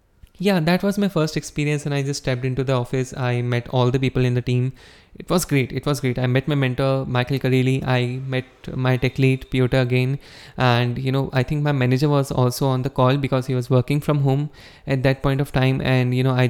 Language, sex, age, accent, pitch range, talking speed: English, male, 20-39, Indian, 130-165 Hz, 245 wpm